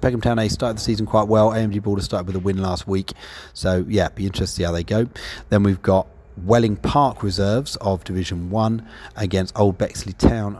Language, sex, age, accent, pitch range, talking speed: English, male, 30-49, British, 90-105 Hz, 215 wpm